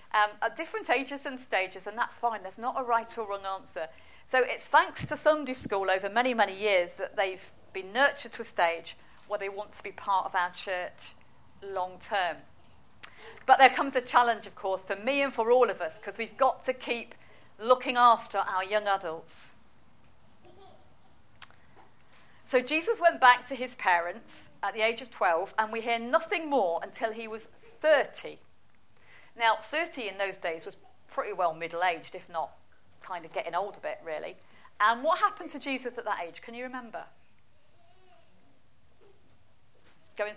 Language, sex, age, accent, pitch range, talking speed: English, female, 40-59, British, 190-260 Hz, 175 wpm